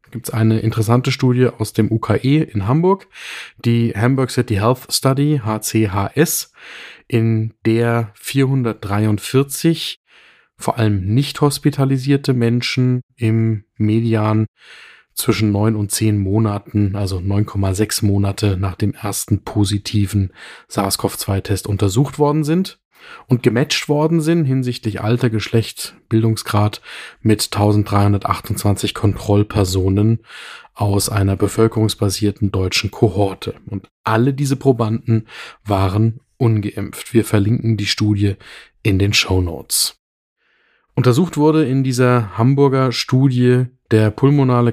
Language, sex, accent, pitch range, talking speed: German, male, German, 100-125 Hz, 105 wpm